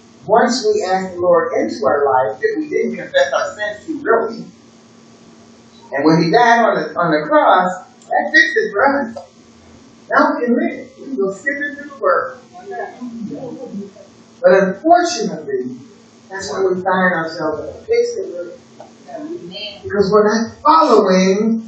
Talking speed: 155 wpm